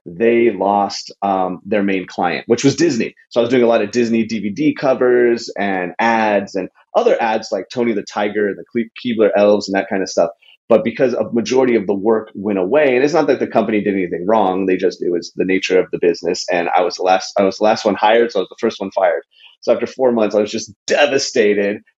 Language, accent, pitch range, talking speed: English, American, 100-115 Hz, 250 wpm